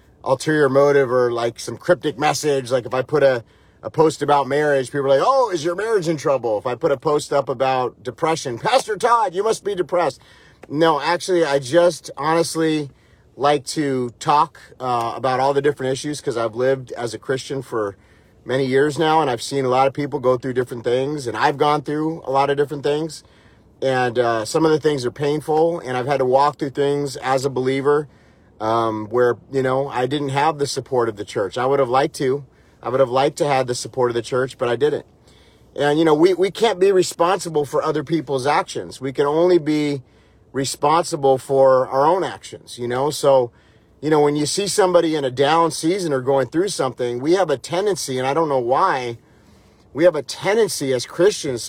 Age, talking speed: 30-49, 215 wpm